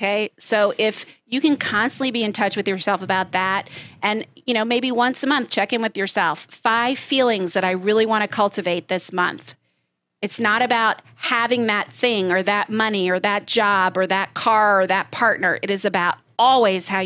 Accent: American